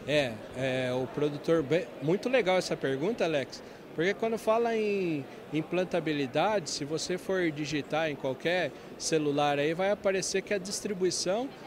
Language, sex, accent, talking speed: Portuguese, male, Brazilian, 155 wpm